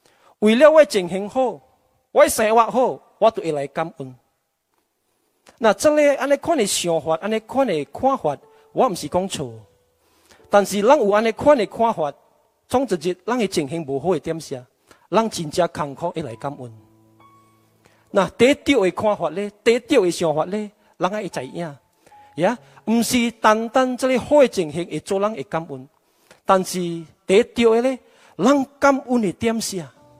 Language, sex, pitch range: Malay, male, 150-230 Hz